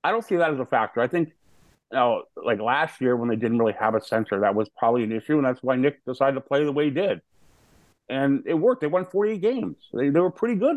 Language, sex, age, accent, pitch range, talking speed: English, male, 50-69, American, 115-160 Hz, 275 wpm